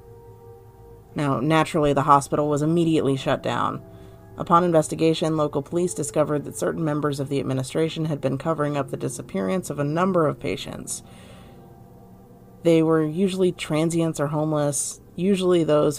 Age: 30-49